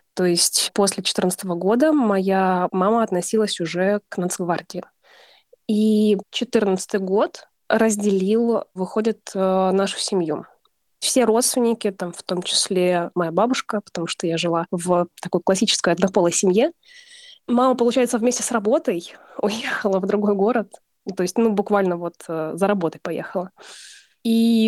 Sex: female